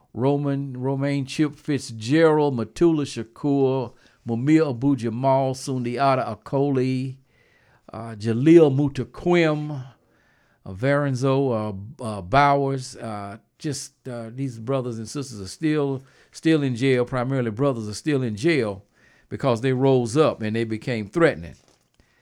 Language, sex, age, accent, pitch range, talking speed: English, male, 50-69, American, 120-155 Hz, 115 wpm